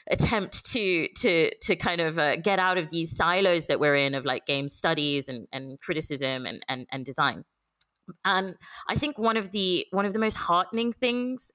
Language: English